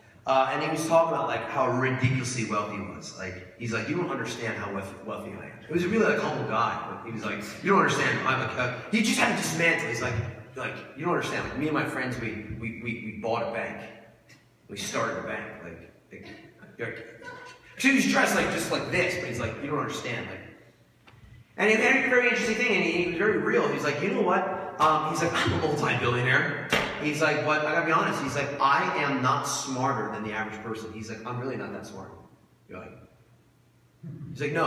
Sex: male